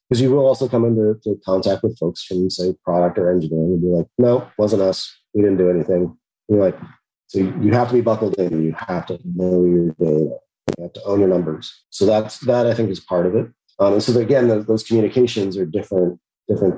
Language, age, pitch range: English, 30-49, 90-115 Hz